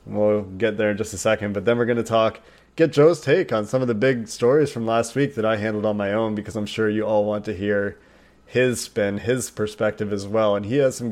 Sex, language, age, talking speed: male, English, 30-49, 265 wpm